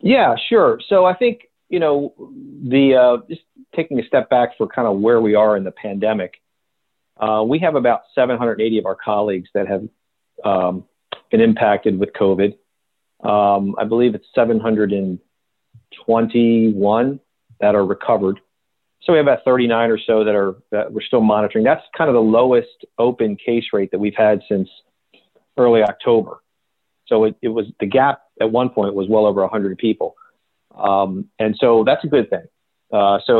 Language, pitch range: English, 105-120 Hz